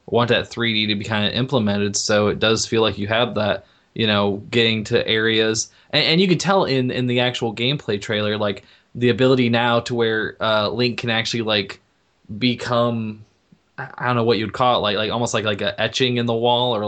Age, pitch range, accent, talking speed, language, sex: 20-39, 110-120 Hz, American, 220 wpm, English, male